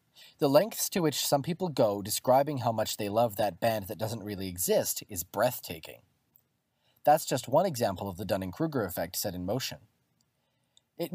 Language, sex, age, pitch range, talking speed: English, male, 30-49, 110-165 Hz, 170 wpm